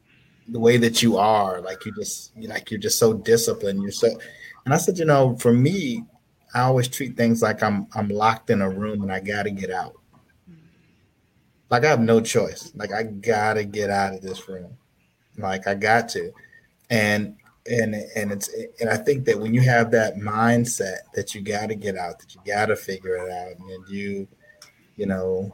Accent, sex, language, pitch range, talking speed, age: American, male, English, 100-115 Hz, 195 wpm, 30-49